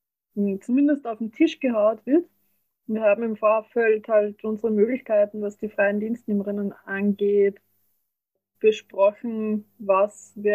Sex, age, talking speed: female, 20-39, 120 wpm